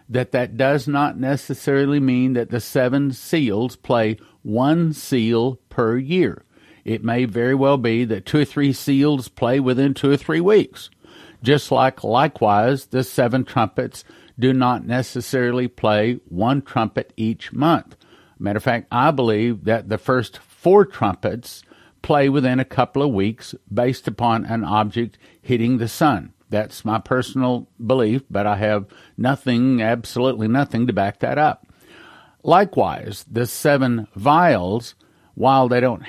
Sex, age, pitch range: male, 50-69, 110-135 Hz